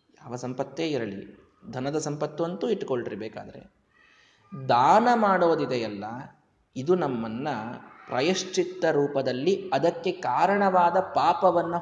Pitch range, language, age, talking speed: 135-195 Hz, Kannada, 20-39, 85 wpm